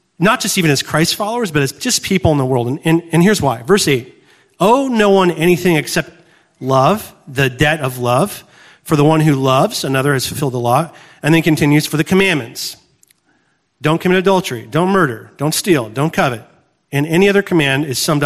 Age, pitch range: 40-59, 130-170 Hz